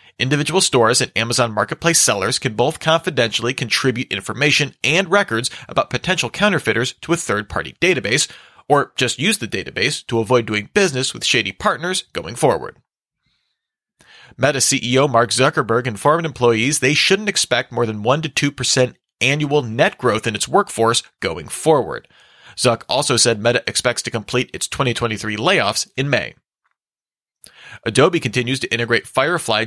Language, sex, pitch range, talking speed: English, male, 115-150 Hz, 145 wpm